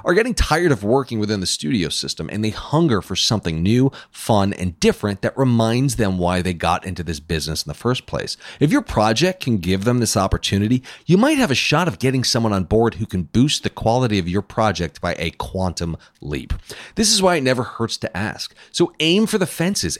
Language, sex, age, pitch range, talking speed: English, male, 40-59, 90-145 Hz, 220 wpm